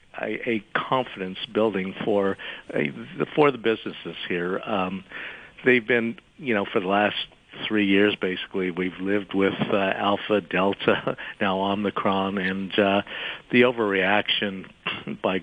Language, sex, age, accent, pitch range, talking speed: English, male, 50-69, American, 95-105 Hz, 125 wpm